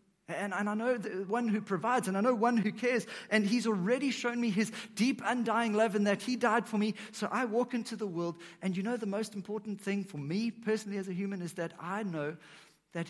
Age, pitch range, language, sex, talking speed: 50-69, 155-215 Hz, English, male, 240 wpm